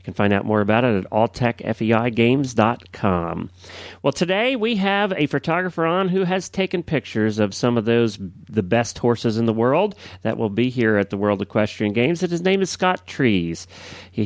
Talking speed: 190 wpm